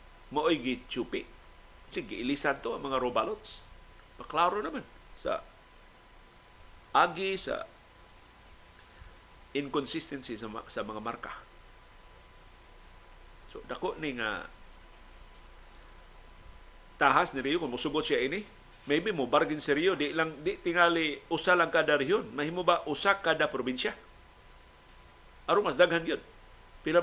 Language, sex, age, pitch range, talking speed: Filipino, male, 50-69, 110-155 Hz, 120 wpm